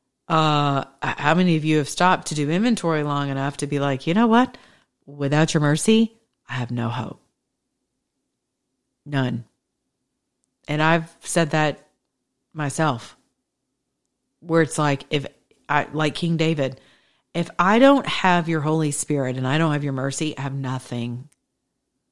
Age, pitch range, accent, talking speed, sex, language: 40-59, 145-165 Hz, American, 150 wpm, female, English